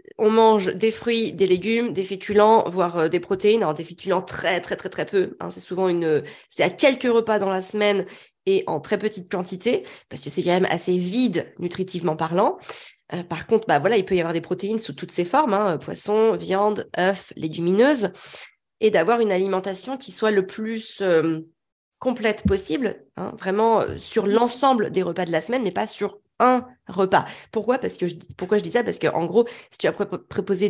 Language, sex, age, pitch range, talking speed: French, female, 30-49, 175-220 Hz, 210 wpm